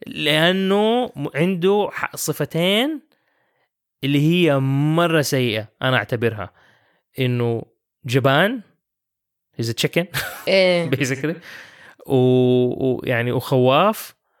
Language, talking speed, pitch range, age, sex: English, 65 wpm, 130-160 Hz, 20-39, male